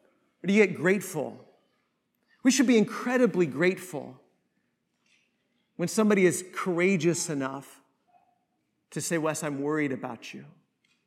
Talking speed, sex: 120 wpm, male